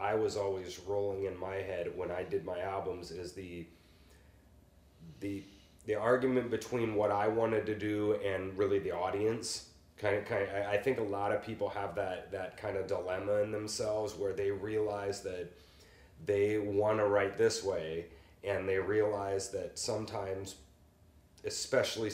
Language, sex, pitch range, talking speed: English, male, 100-110 Hz, 165 wpm